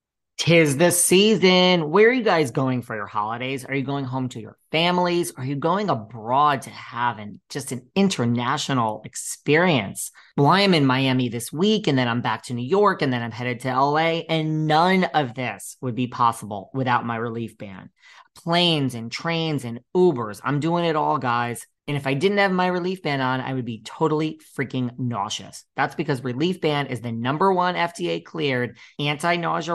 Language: English